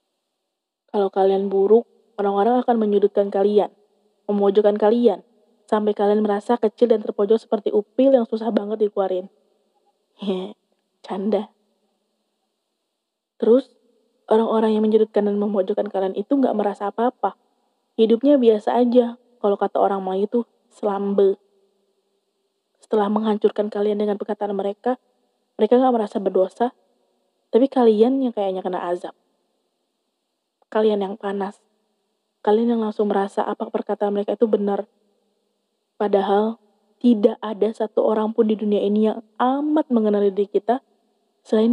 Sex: female